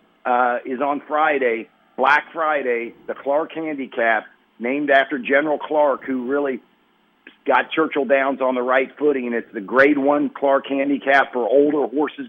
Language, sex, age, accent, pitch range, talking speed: English, male, 50-69, American, 125-155 Hz, 155 wpm